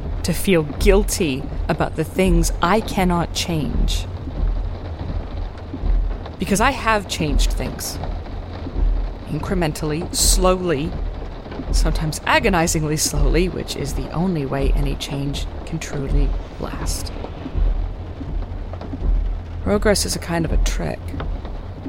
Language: English